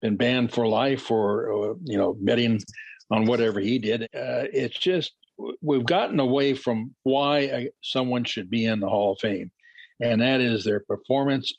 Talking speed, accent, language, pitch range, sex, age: 175 wpm, American, English, 120-155 Hz, male, 60-79